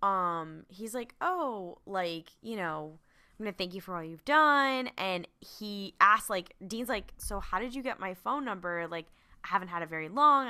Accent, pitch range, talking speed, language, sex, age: American, 160-190 Hz, 205 wpm, English, female, 10-29